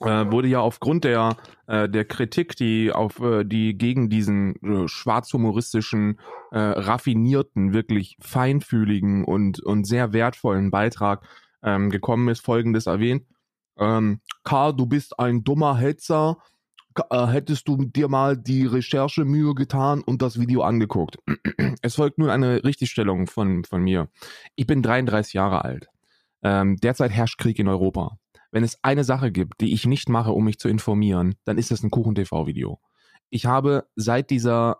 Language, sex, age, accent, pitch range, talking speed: German, male, 20-39, German, 105-125 Hz, 155 wpm